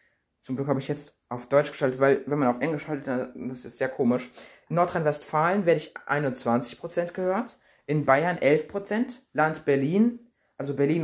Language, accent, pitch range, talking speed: German, German, 140-180 Hz, 180 wpm